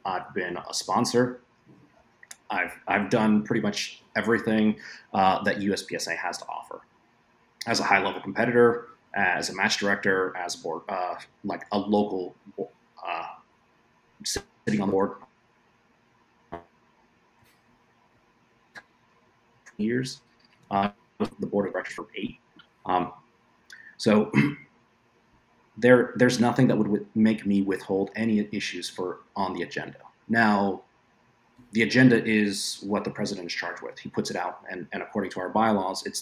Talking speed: 135 wpm